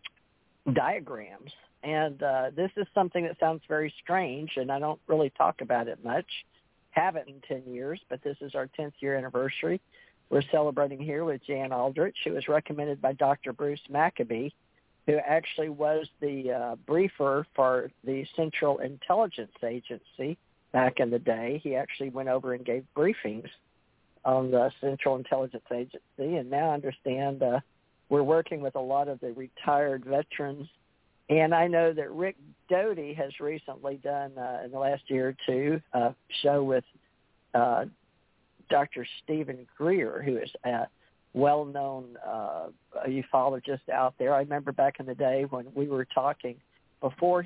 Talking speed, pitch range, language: 155 wpm, 130-150 Hz, English